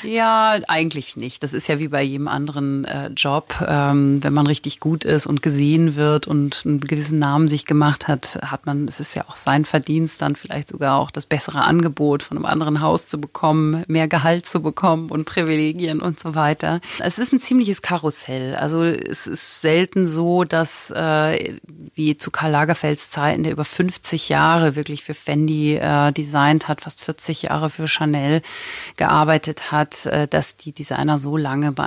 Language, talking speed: German, 185 wpm